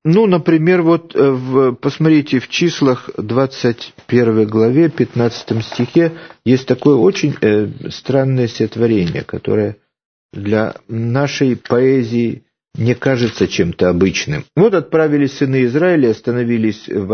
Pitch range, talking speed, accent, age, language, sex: 110-145 Hz, 110 wpm, native, 50-69, Russian, male